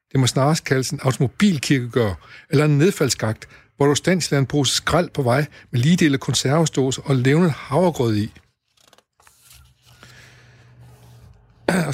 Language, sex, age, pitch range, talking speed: Danish, male, 60-79, 120-155 Hz, 130 wpm